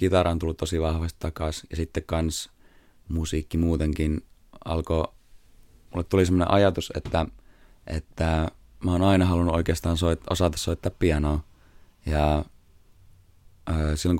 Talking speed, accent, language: 115 wpm, native, Finnish